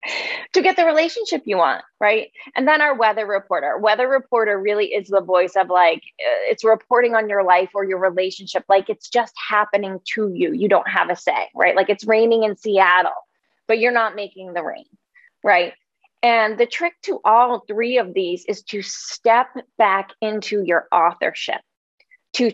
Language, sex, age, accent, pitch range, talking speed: English, female, 20-39, American, 200-255 Hz, 180 wpm